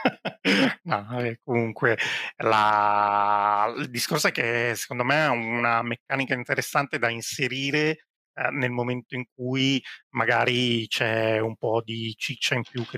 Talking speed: 130 wpm